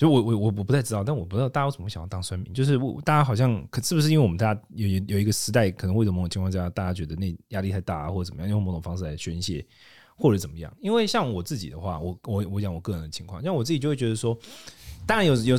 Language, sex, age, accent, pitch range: Chinese, male, 20-39, native, 95-130 Hz